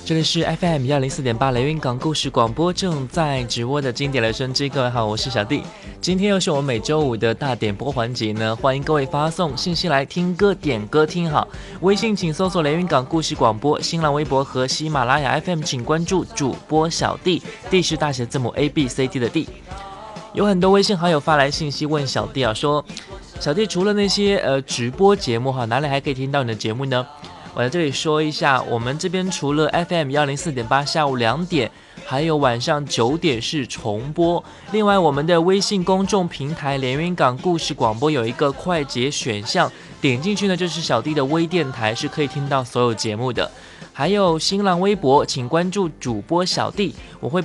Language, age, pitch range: Chinese, 20-39, 130-170 Hz